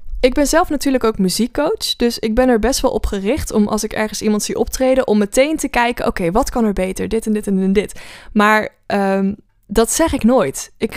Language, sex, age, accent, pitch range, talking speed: Dutch, female, 20-39, Dutch, 195-235 Hz, 225 wpm